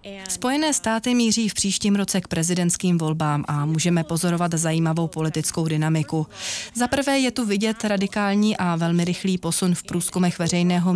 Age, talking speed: 30-49, 150 wpm